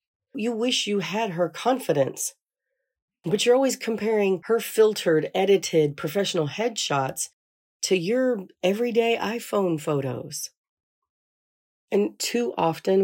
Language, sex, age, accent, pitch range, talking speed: English, female, 40-59, American, 155-205 Hz, 105 wpm